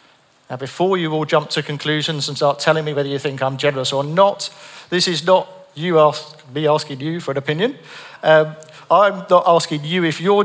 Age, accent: 50-69, British